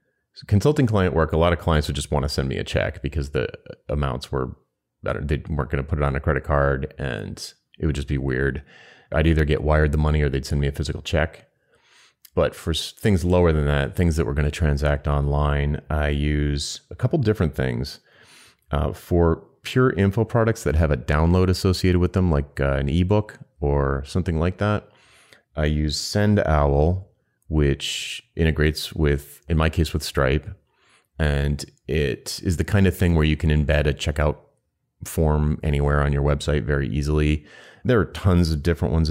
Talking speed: 195 wpm